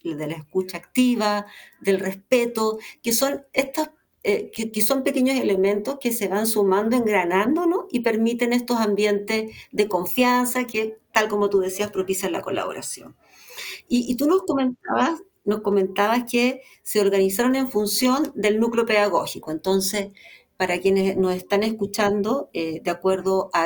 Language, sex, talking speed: Spanish, female, 150 wpm